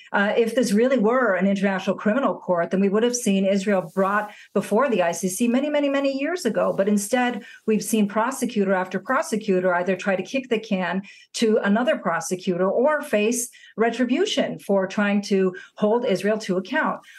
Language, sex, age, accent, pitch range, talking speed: English, female, 40-59, American, 185-225 Hz, 175 wpm